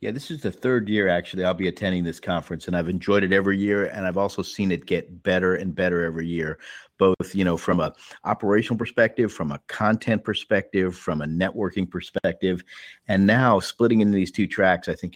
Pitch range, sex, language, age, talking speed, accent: 90-105 Hz, male, English, 50-69, 210 wpm, American